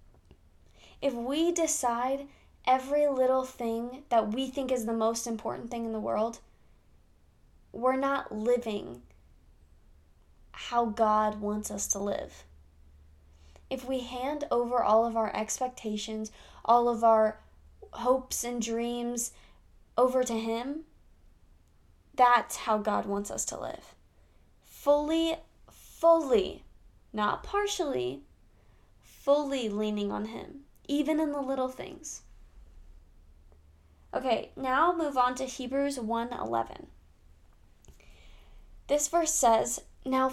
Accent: American